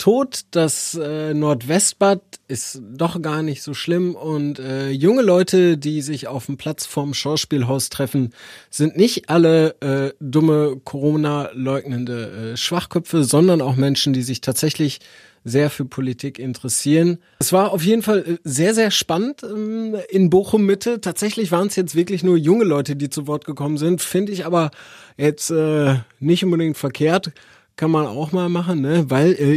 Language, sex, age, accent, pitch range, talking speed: German, male, 30-49, German, 135-175 Hz, 160 wpm